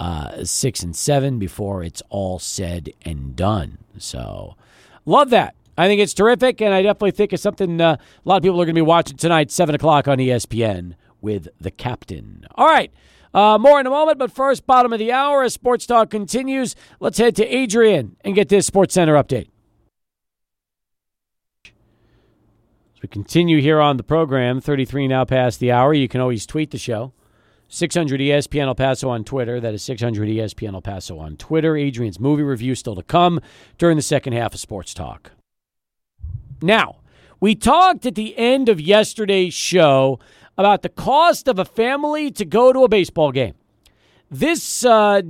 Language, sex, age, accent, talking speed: English, male, 40-59, American, 180 wpm